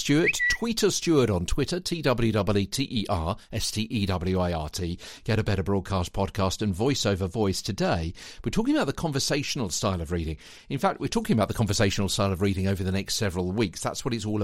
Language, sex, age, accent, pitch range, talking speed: English, male, 50-69, British, 90-125 Hz, 235 wpm